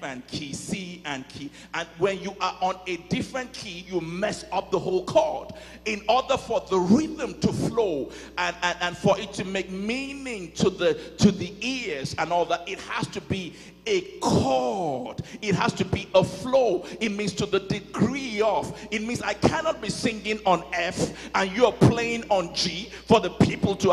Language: English